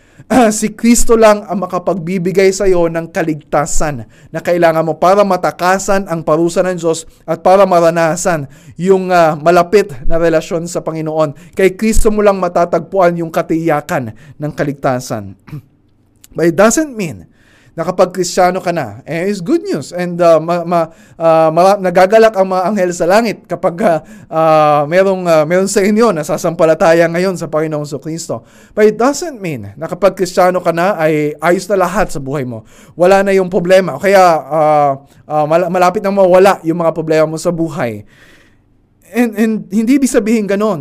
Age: 20-39